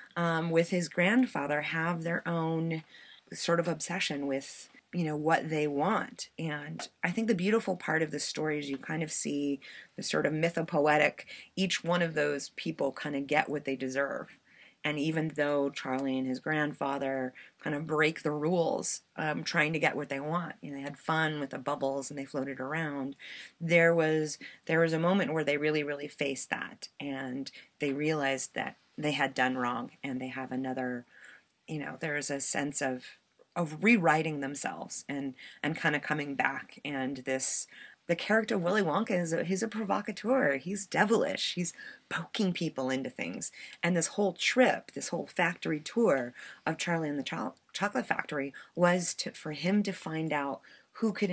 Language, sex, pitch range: English, female, 140-170 Hz